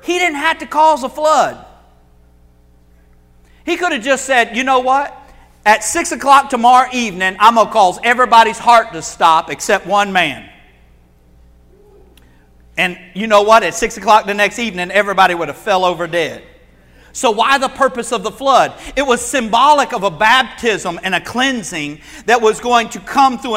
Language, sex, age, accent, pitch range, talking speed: English, male, 50-69, American, 195-260 Hz, 175 wpm